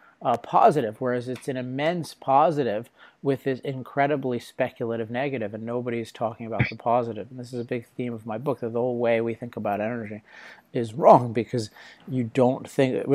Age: 30-49